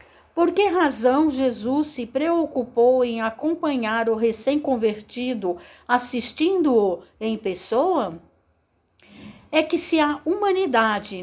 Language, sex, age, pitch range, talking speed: Portuguese, female, 60-79, 225-305 Hz, 95 wpm